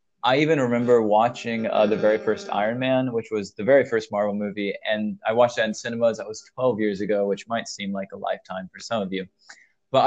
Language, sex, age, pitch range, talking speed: English, male, 20-39, 105-145 Hz, 230 wpm